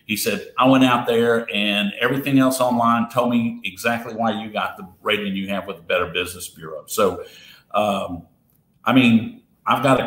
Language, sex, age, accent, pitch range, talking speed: English, male, 50-69, American, 105-140 Hz, 185 wpm